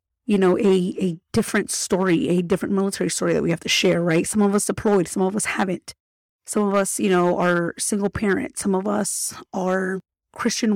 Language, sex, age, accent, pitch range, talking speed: English, female, 30-49, American, 175-205 Hz, 205 wpm